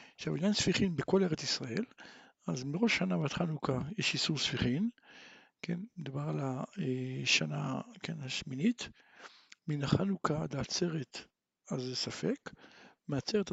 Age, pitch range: 60-79, 140-200 Hz